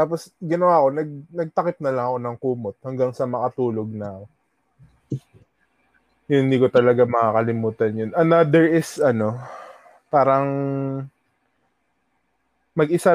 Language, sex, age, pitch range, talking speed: Filipino, male, 20-39, 115-155 Hz, 110 wpm